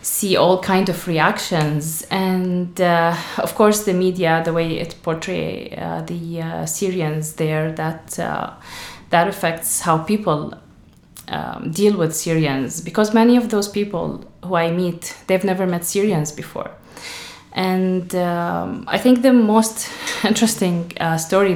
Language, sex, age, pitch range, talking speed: English, female, 30-49, 170-210 Hz, 145 wpm